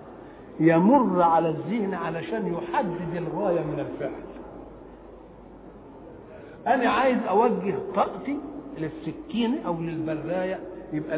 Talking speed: 85 wpm